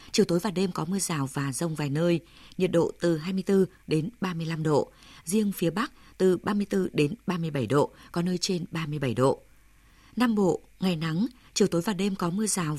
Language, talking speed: Vietnamese, 245 wpm